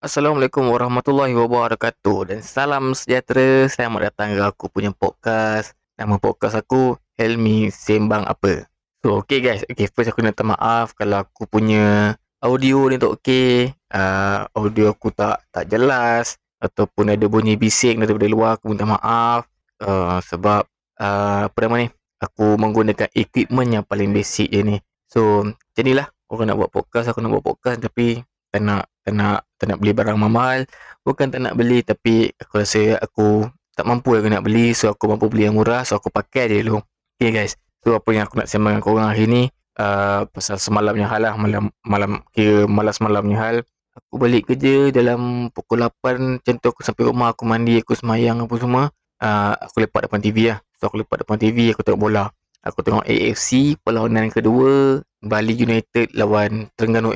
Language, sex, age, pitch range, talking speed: Malay, male, 20-39, 105-120 Hz, 175 wpm